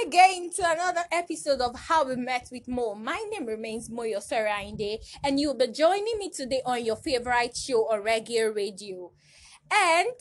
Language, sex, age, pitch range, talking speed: English, female, 20-39, 240-355 Hz, 170 wpm